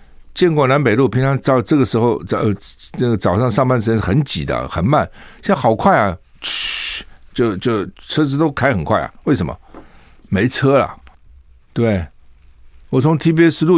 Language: Chinese